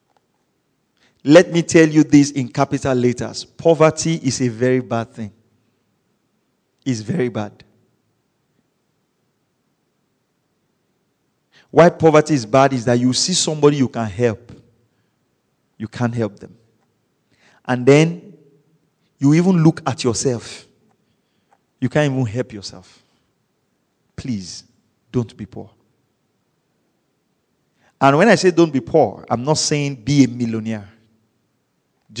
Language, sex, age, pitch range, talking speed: English, male, 40-59, 115-165 Hz, 115 wpm